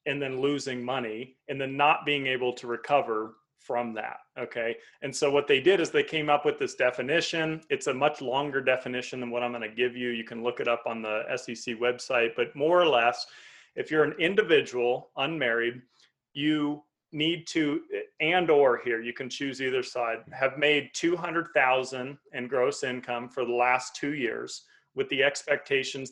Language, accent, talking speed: English, American, 185 wpm